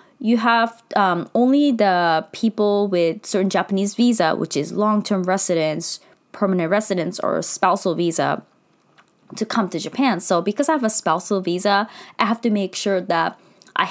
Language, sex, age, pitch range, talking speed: English, female, 20-39, 180-225 Hz, 165 wpm